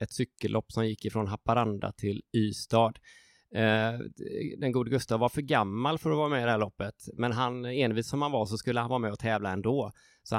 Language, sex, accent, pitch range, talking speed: Swedish, male, native, 110-125 Hz, 220 wpm